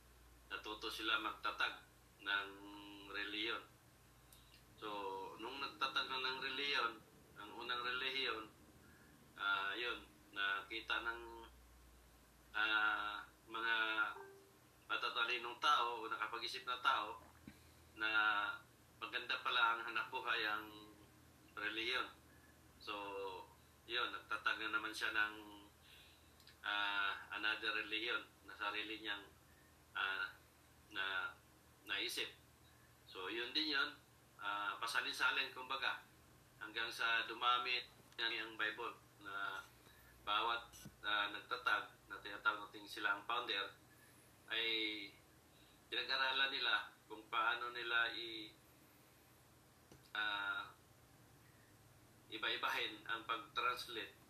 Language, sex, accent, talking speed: Filipino, male, native, 95 wpm